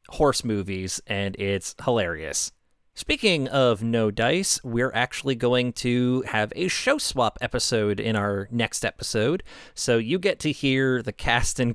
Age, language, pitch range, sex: 30-49, English, 110-145 Hz, male